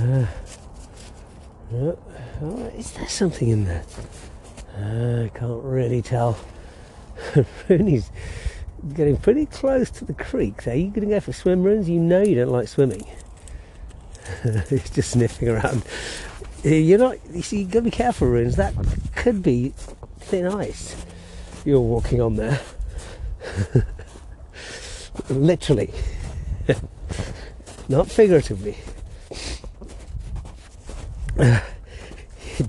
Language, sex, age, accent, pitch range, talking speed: English, male, 50-69, British, 85-140 Hz, 100 wpm